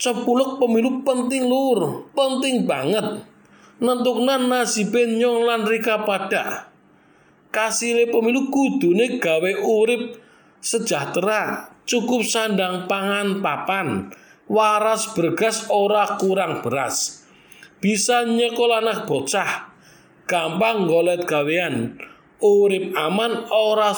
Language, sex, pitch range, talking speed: Indonesian, male, 185-240 Hz, 100 wpm